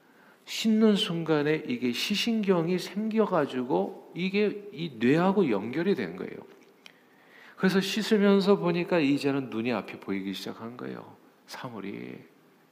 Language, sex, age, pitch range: Korean, male, 50-69, 125-205 Hz